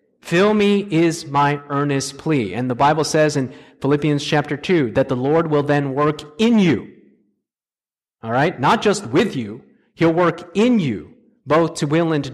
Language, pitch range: English, 150-200 Hz